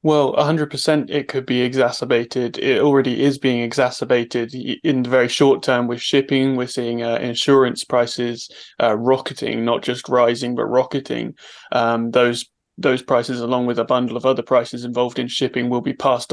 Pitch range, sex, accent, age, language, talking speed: 120-135 Hz, male, British, 20-39, English, 175 wpm